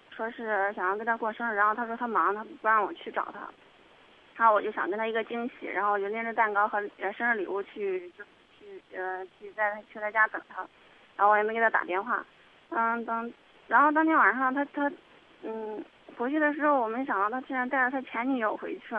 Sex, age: female, 20-39